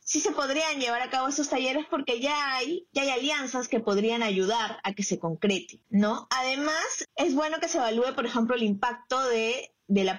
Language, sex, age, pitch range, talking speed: Spanish, female, 20-39, 205-250 Hz, 205 wpm